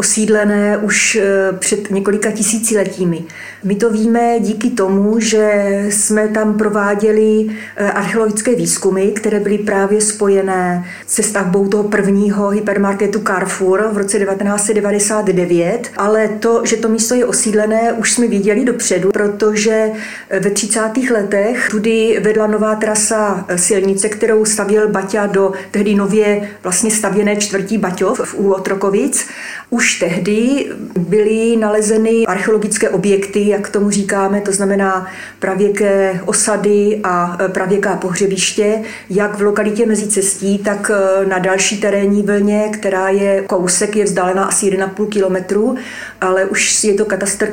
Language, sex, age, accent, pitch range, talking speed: Czech, female, 40-59, native, 195-220 Hz, 125 wpm